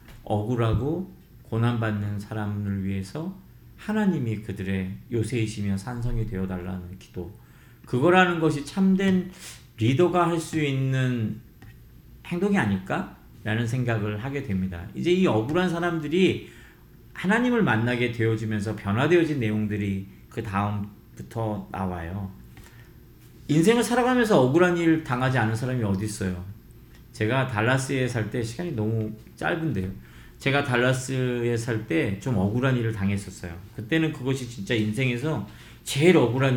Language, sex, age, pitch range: Korean, male, 40-59, 105-145 Hz